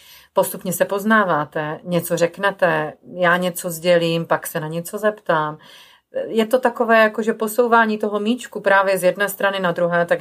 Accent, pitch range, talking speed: native, 160-190 Hz, 160 wpm